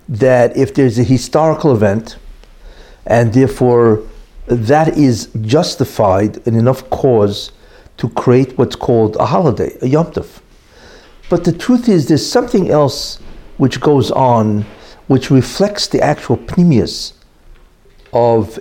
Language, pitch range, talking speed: English, 115-160 Hz, 125 wpm